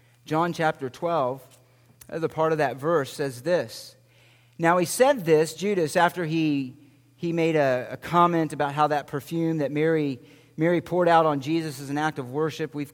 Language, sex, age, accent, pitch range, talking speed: English, male, 50-69, American, 135-205 Hz, 180 wpm